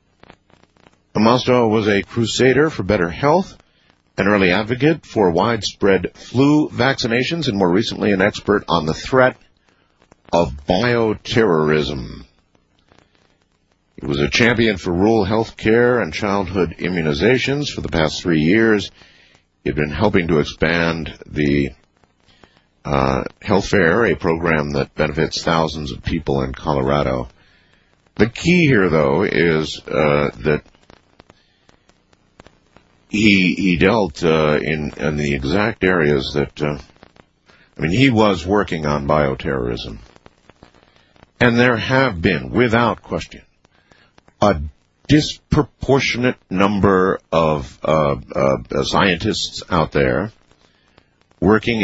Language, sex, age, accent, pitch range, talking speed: English, male, 50-69, American, 75-110 Hz, 115 wpm